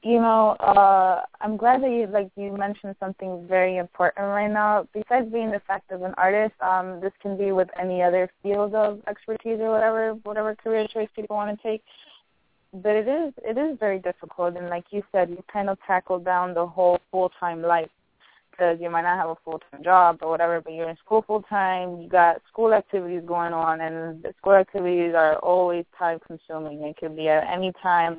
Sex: female